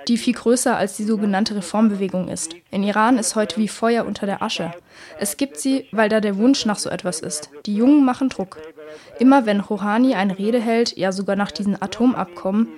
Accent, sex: German, female